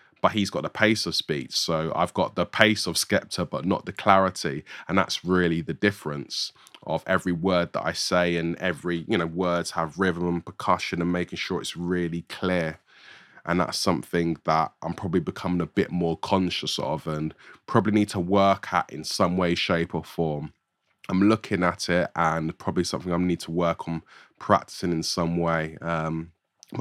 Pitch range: 85-100 Hz